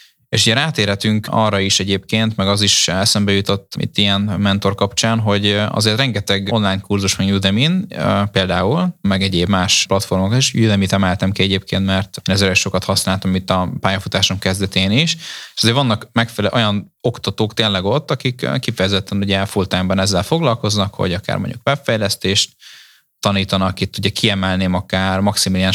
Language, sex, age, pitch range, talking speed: Hungarian, male, 20-39, 95-110 Hz, 150 wpm